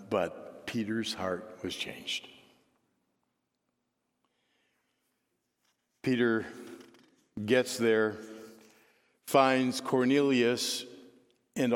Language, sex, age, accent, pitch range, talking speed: English, male, 60-79, American, 105-125 Hz, 55 wpm